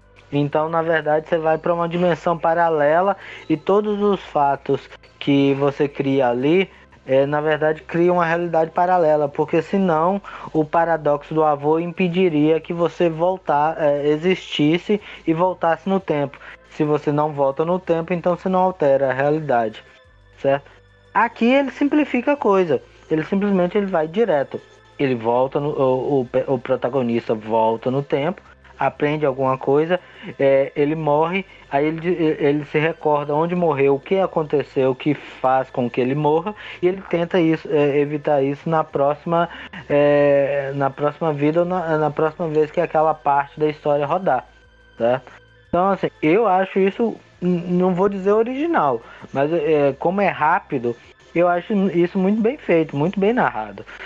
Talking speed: 150 wpm